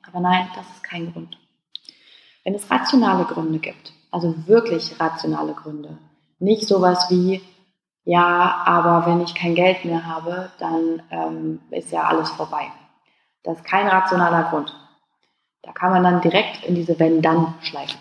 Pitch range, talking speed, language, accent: 165-205 Hz, 145 wpm, German, German